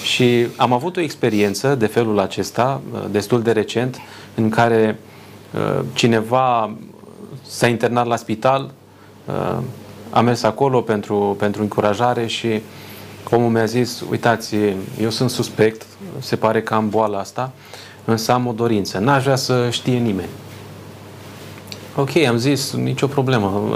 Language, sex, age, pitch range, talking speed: Romanian, male, 30-49, 105-135 Hz, 135 wpm